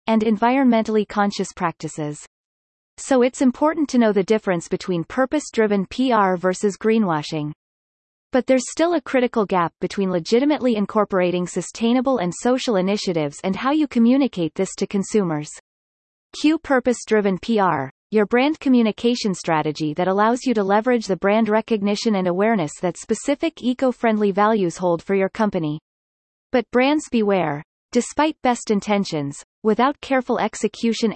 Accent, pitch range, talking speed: American, 180-245 Hz, 140 wpm